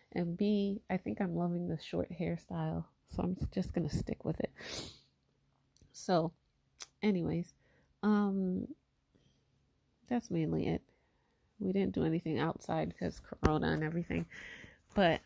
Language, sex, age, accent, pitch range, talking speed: English, female, 30-49, American, 160-205 Hz, 130 wpm